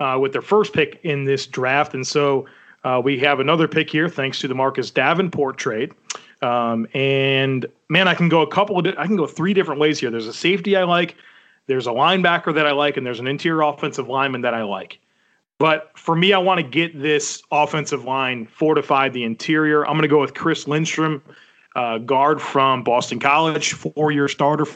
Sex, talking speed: male, 205 wpm